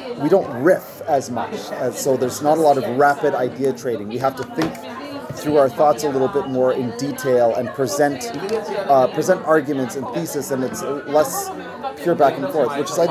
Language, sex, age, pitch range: Danish, male, 30-49, 130-160 Hz